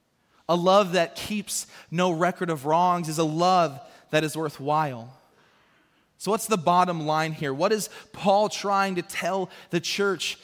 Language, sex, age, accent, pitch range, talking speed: English, male, 20-39, American, 155-205 Hz, 160 wpm